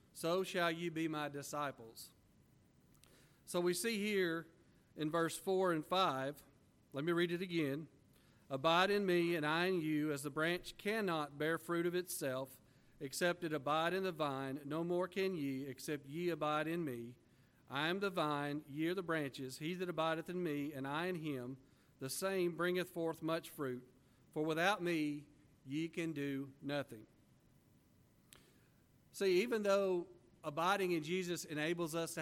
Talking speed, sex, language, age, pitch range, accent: 165 wpm, male, English, 50-69, 140-175 Hz, American